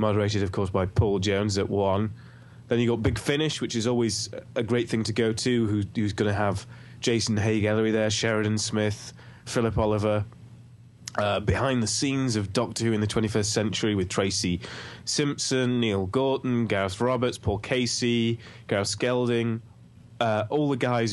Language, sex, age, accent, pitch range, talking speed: English, male, 20-39, British, 100-120 Hz, 175 wpm